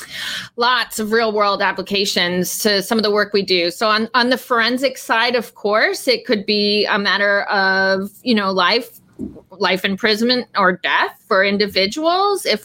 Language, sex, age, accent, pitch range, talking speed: English, female, 30-49, American, 190-240 Hz, 170 wpm